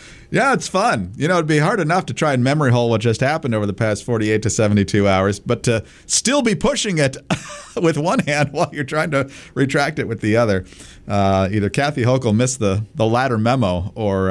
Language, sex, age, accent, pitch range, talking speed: English, male, 40-59, American, 100-145 Hz, 220 wpm